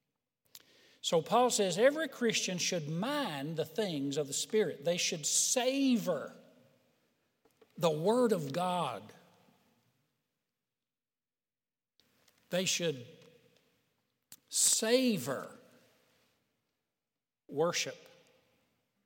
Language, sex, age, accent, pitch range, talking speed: English, male, 60-79, American, 150-205 Hz, 70 wpm